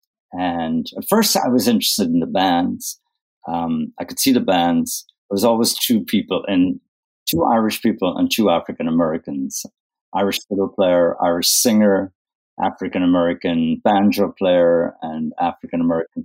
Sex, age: male, 50-69